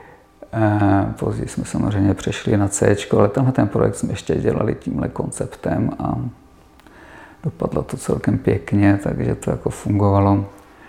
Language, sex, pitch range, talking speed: Czech, male, 100-105 Hz, 140 wpm